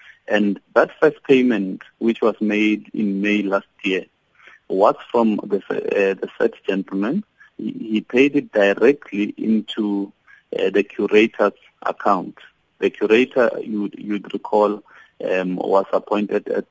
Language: English